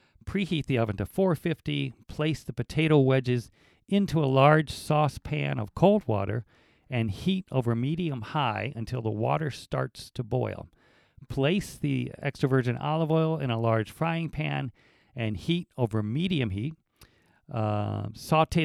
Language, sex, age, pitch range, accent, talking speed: English, male, 50-69, 115-155 Hz, American, 145 wpm